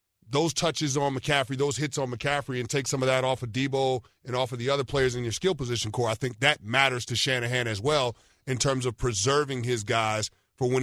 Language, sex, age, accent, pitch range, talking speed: English, male, 40-59, American, 125-150 Hz, 240 wpm